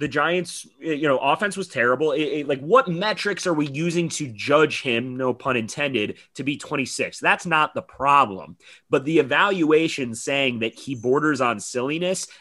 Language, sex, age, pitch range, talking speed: English, male, 30-49, 125-180 Hz, 180 wpm